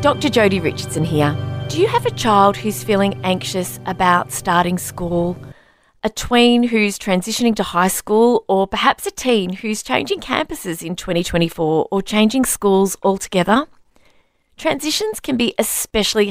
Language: English